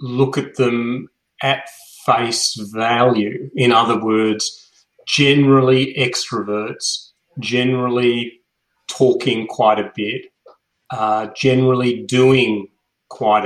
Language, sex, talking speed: English, male, 90 wpm